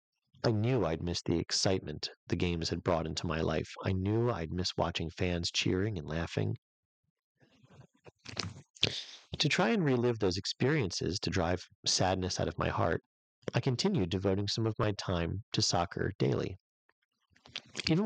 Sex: male